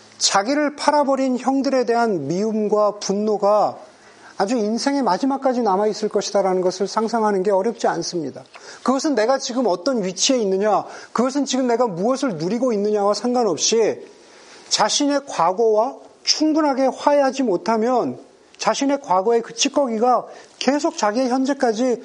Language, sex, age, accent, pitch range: Korean, male, 40-59, native, 210-275 Hz